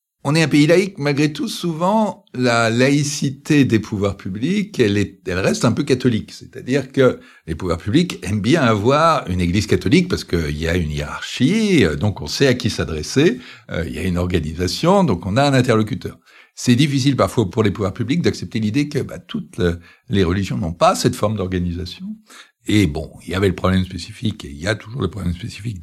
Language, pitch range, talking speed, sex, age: French, 90-130 Hz, 205 wpm, male, 60-79